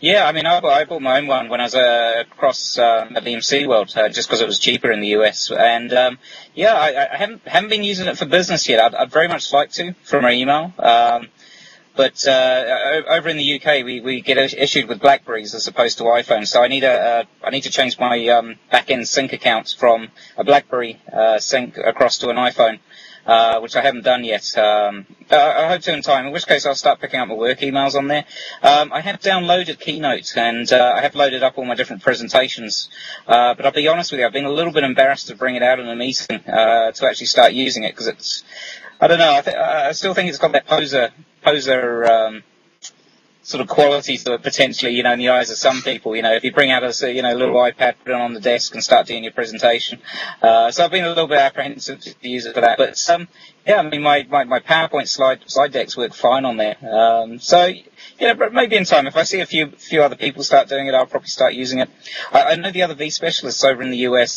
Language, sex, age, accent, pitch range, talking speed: English, male, 20-39, British, 120-150 Hz, 250 wpm